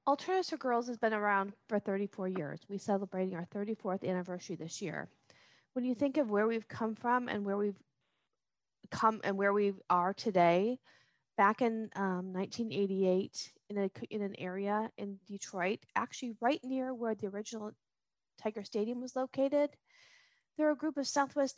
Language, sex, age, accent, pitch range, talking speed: English, female, 40-59, American, 200-250 Hz, 165 wpm